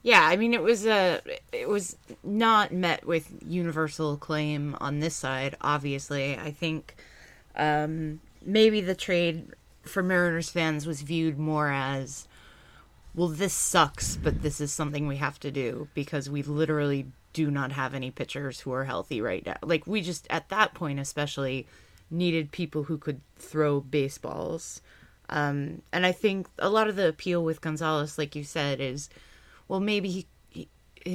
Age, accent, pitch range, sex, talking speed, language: 20-39, American, 145-175 Hz, female, 165 wpm, English